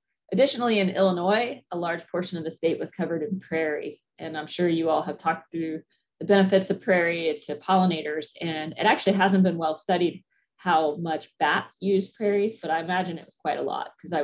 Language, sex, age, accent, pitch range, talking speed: English, female, 30-49, American, 155-190 Hz, 205 wpm